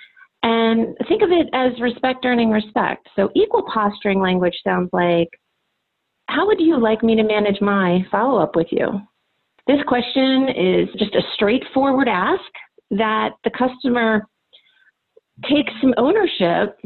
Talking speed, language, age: 135 wpm, English, 40-59